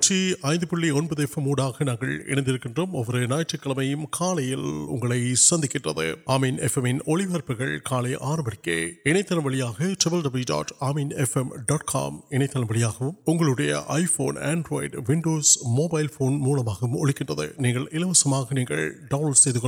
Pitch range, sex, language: 125-155 Hz, male, Urdu